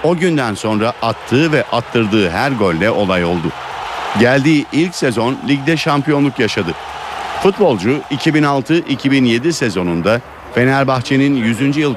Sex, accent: male, native